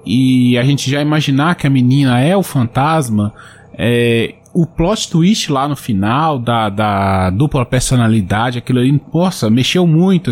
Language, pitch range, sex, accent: Portuguese, 120-170 Hz, male, Brazilian